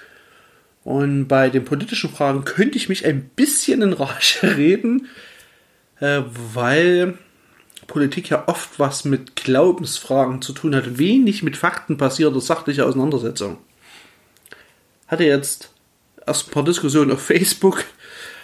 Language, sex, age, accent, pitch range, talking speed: German, male, 40-59, German, 130-175 Hz, 120 wpm